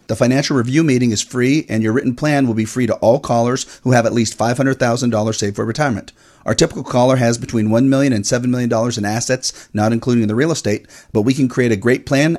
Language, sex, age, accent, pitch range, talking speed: English, male, 40-59, American, 110-135 Hz, 230 wpm